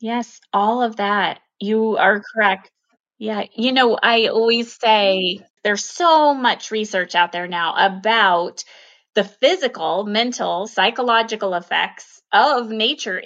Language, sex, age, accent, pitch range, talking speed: English, female, 20-39, American, 200-250 Hz, 125 wpm